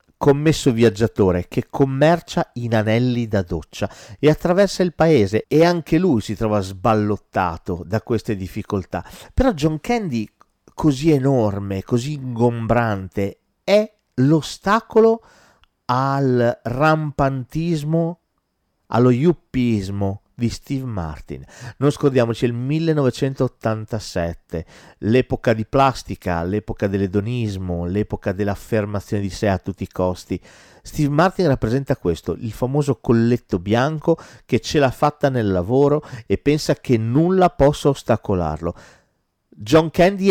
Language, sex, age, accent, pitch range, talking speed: Italian, male, 40-59, native, 100-145 Hz, 115 wpm